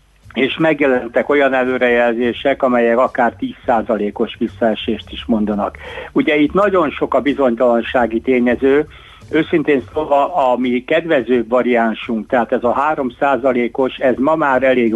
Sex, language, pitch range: male, Hungarian, 115-130 Hz